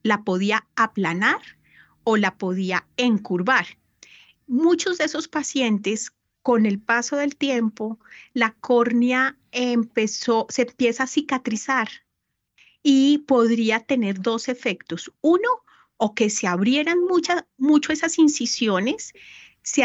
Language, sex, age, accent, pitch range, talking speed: Spanish, female, 30-49, Colombian, 210-270 Hz, 115 wpm